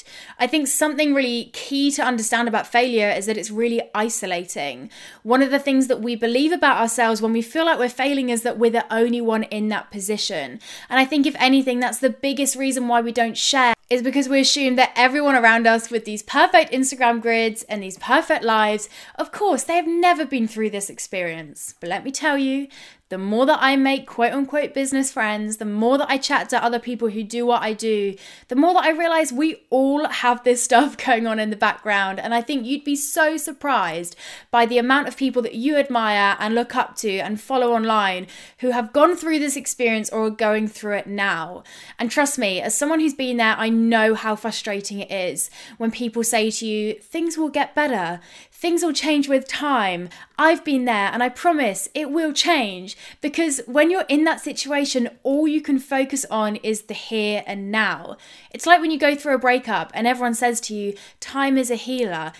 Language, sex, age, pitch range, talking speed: English, female, 10-29, 220-275 Hz, 215 wpm